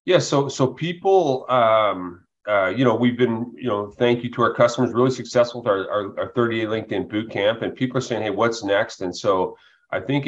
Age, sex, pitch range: 30-49, male, 100-120 Hz